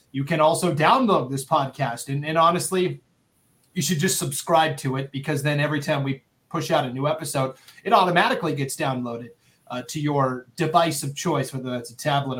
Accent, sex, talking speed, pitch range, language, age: American, male, 190 wpm, 130-160 Hz, English, 30-49